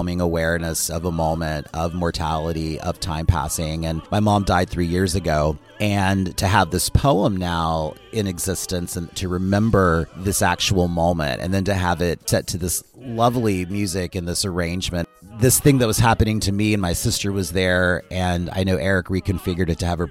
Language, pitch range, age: English, 85-95 Hz, 30-49